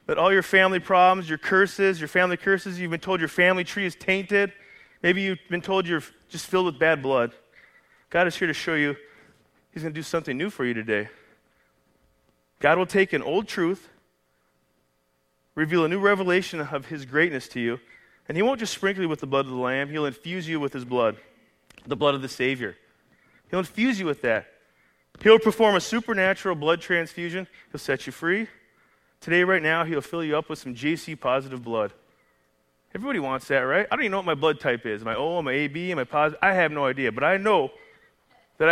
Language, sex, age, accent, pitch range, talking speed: English, male, 30-49, American, 135-190 Hz, 210 wpm